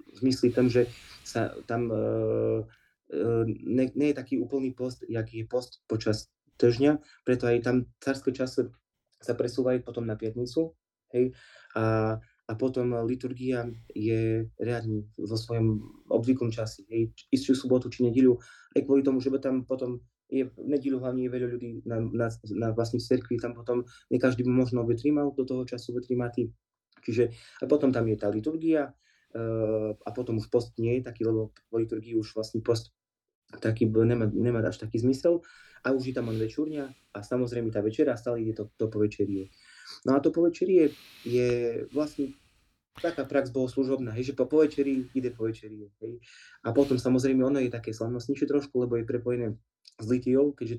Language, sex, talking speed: Slovak, male, 170 wpm